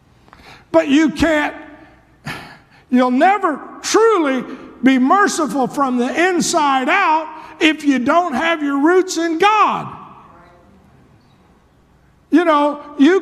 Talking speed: 105 wpm